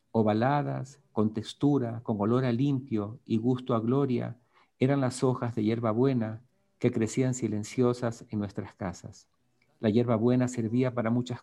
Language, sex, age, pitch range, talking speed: Spanish, male, 50-69, 110-135 Hz, 140 wpm